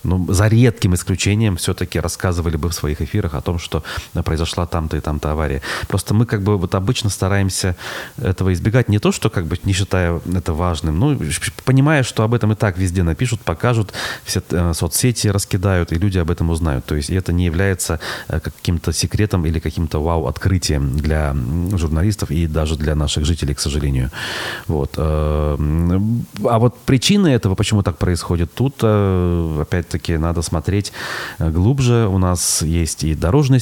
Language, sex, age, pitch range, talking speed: Russian, male, 30-49, 80-105 Hz, 165 wpm